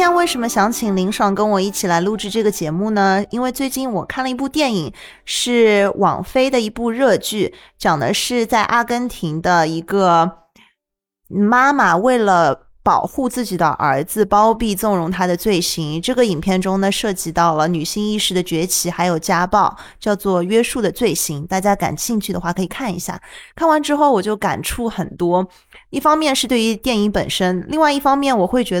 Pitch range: 175-240 Hz